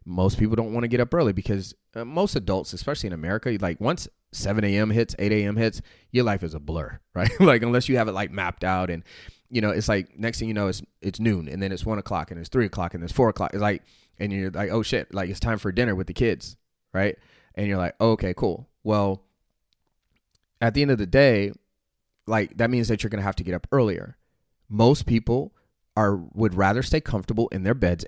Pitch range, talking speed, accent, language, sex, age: 90-115 Hz, 240 wpm, American, English, male, 30-49